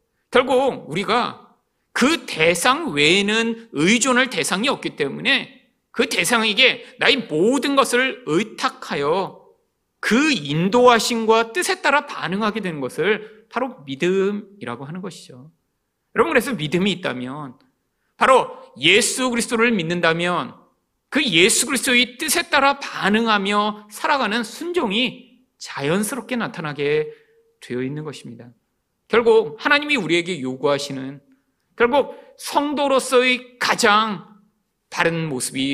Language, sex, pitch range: Korean, male, 165-250 Hz